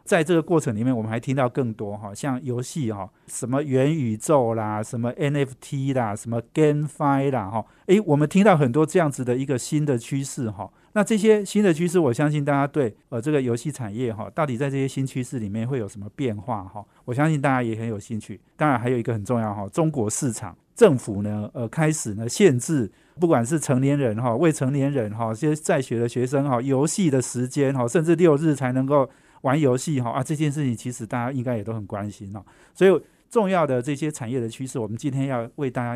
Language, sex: Chinese, male